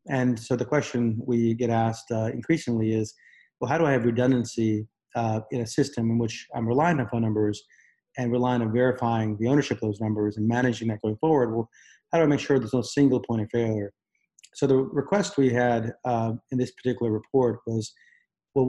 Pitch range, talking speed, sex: 110-125 Hz, 210 wpm, male